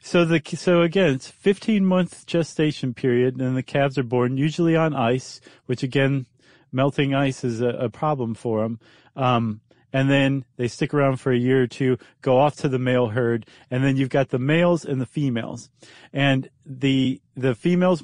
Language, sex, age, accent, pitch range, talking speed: English, male, 40-59, American, 125-150 Hz, 190 wpm